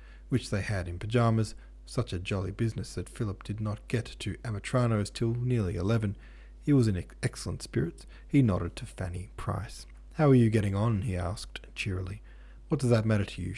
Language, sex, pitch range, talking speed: English, male, 90-115 Hz, 190 wpm